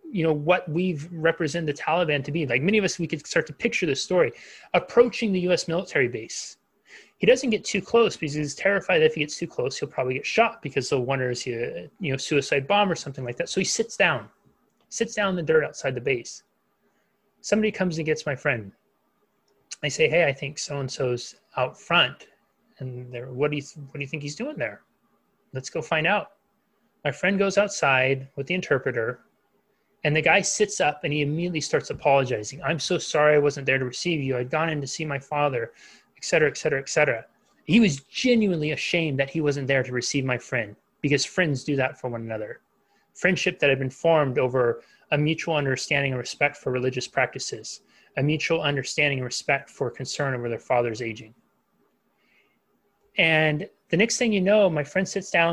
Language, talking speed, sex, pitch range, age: English, 205 wpm, male, 135-190 Hz, 30-49